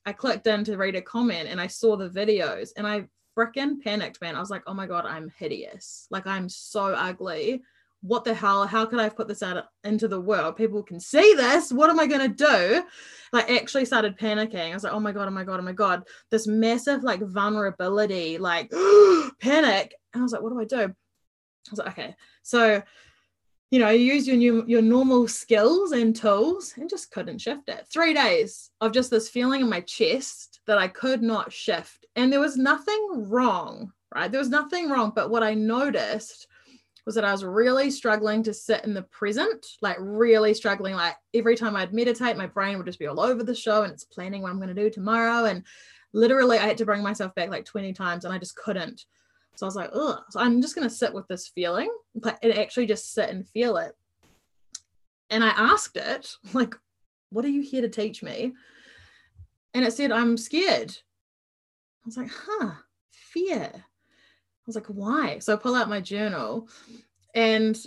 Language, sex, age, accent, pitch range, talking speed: English, female, 20-39, Australian, 200-250 Hz, 210 wpm